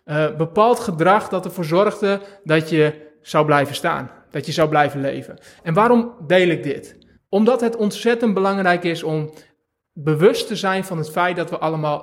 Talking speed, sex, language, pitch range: 180 wpm, male, Dutch, 155-200 Hz